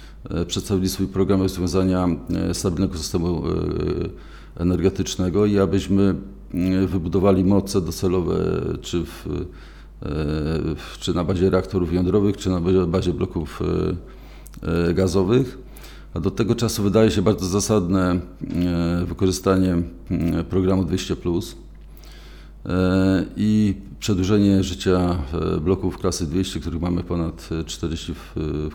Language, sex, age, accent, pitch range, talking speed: Polish, male, 40-59, native, 85-95 Hz, 95 wpm